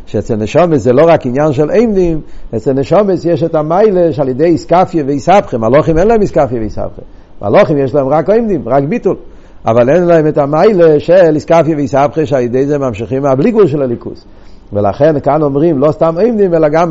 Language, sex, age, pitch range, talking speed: Hebrew, male, 60-79, 120-165 Hz, 185 wpm